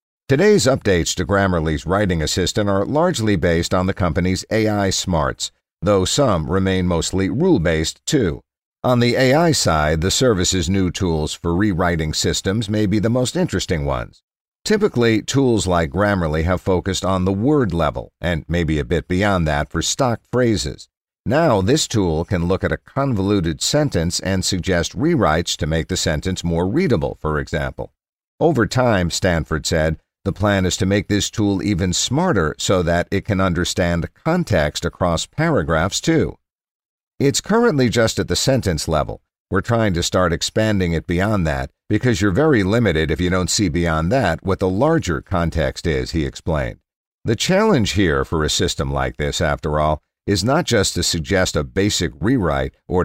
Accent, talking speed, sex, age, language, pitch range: American, 170 wpm, male, 50-69, English, 85-105 Hz